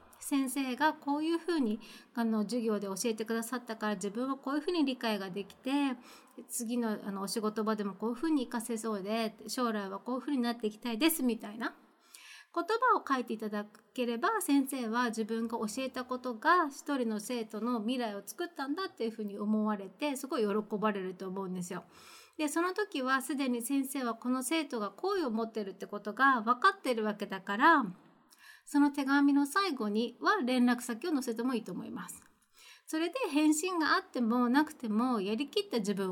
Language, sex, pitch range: Japanese, female, 215-300 Hz